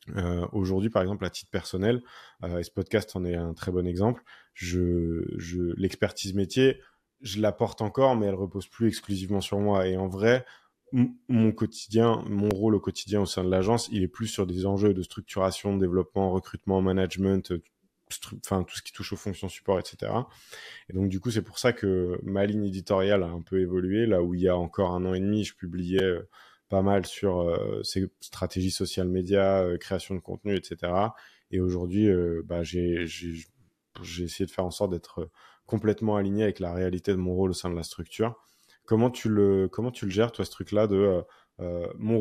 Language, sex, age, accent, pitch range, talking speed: French, male, 20-39, French, 95-105 Hz, 205 wpm